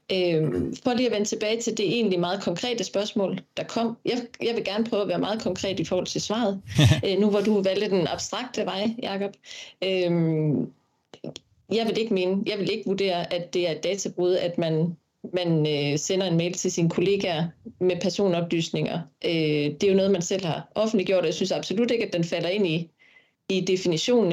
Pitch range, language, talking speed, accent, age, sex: 170-205 Hz, Danish, 205 wpm, native, 30-49, female